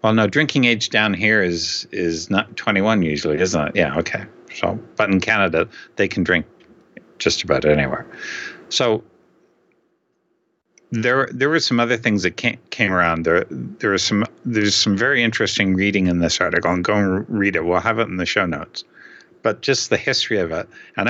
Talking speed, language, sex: 185 wpm, English, male